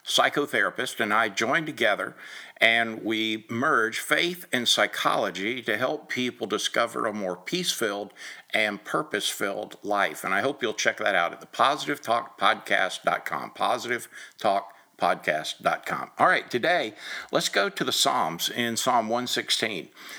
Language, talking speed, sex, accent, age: English, 145 wpm, male, American, 50-69